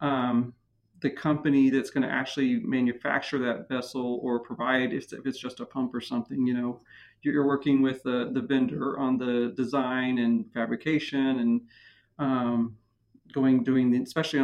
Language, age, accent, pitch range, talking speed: English, 40-59, American, 125-145 Hz, 160 wpm